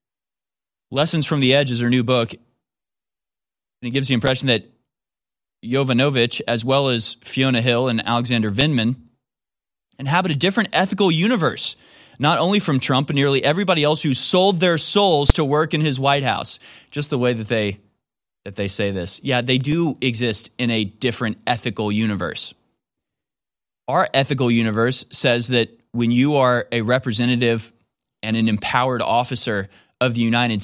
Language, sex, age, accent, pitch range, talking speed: English, male, 20-39, American, 115-145 Hz, 155 wpm